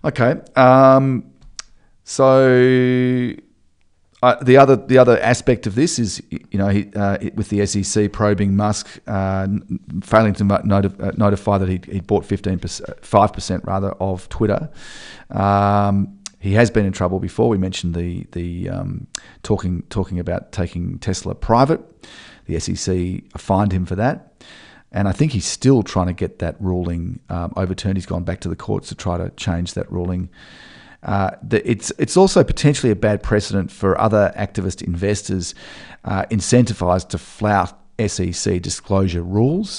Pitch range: 90-105 Hz